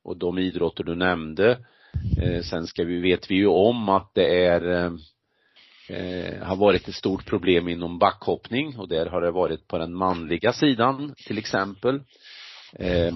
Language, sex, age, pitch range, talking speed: Swedish, male, 40-59, 85-110 Hz, 160 wpm